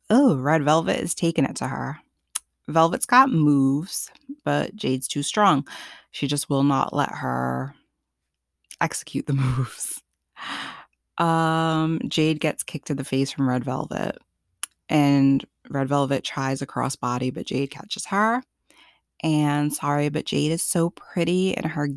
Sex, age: female, 20-39